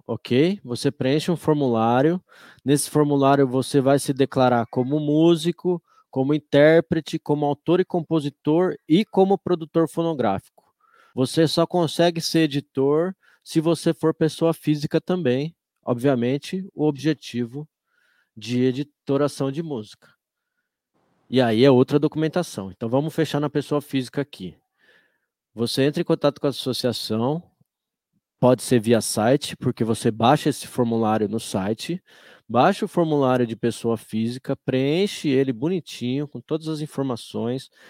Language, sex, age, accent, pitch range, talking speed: Portuguese, male, 20-39, Brazilian, 125-160 Hz, 135 wpm